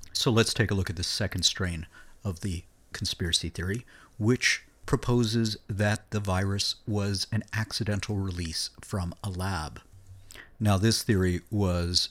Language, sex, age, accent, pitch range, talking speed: English, male, 50-69, American, 90-105 Hz, 145 wpm